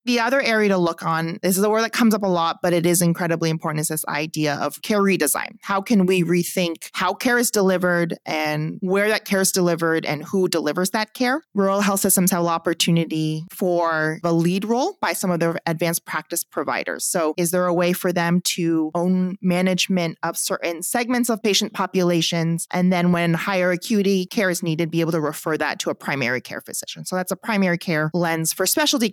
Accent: American